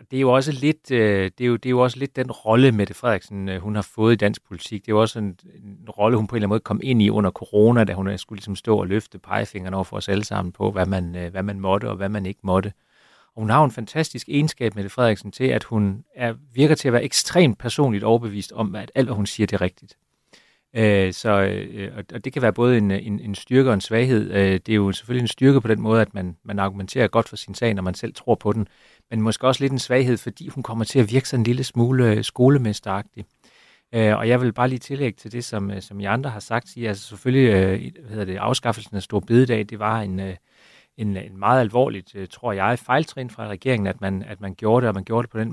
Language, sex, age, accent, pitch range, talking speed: Danish, male, 30-49, native, 100-125 Hz, 255 wpm